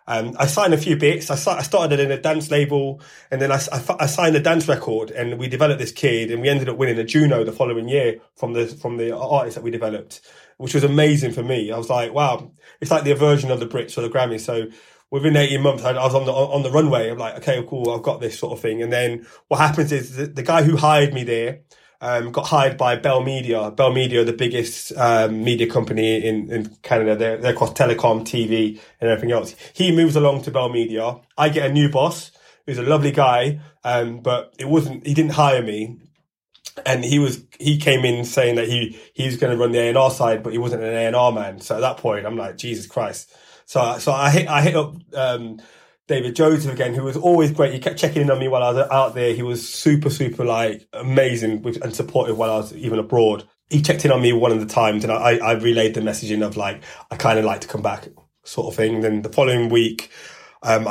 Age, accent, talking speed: 30-49, British, 245 wpm